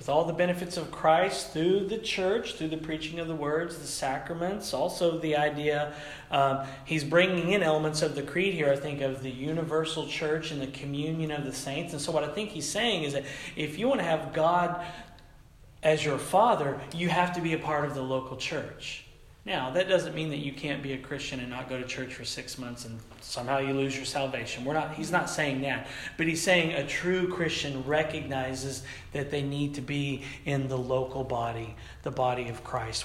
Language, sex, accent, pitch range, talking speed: English, male, American, 130-170 Hz, 215 wpm